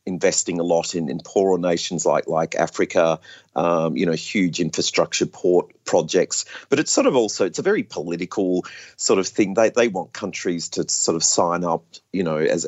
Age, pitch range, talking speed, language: 40-59, 85-100 Hz, 195 wpm, English